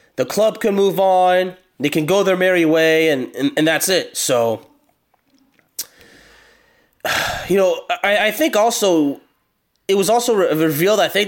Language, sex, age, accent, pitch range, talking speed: English, male, 20-39, American, 155-195 Hz, 160 wpm